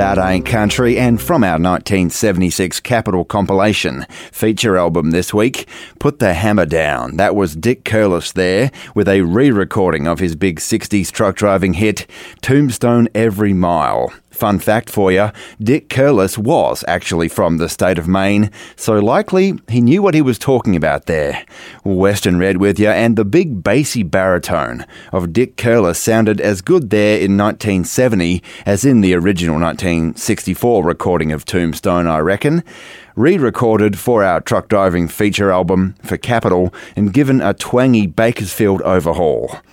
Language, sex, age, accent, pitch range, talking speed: English, male, 30-49, Australian, 90-115 Hz, 155 wpm